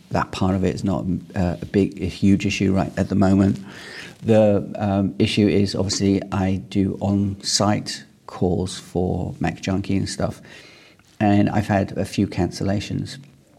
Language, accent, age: English, British, 40-59